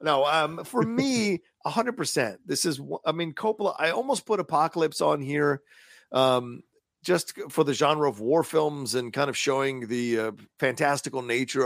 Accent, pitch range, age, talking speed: American, 130-180 Hz, 40-59, 165 wpm